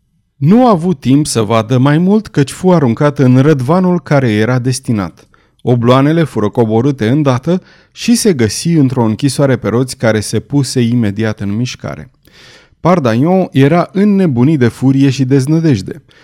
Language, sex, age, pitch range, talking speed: Romanian, male, 30-49, 115-155 Hz, 150 wpm